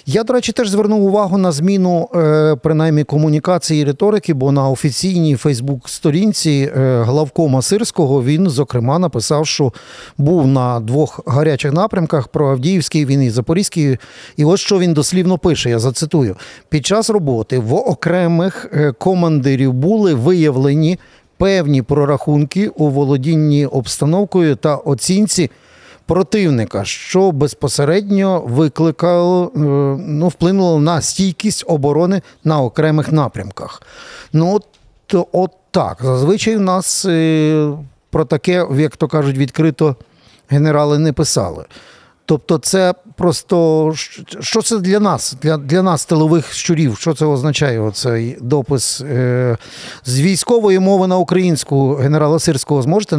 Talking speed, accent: 120 wpm, native